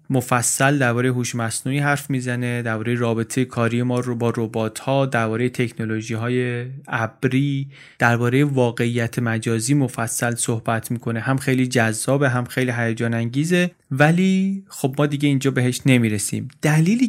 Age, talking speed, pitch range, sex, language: 30-49, 130 wpm, 120-145 Hz, male, Persian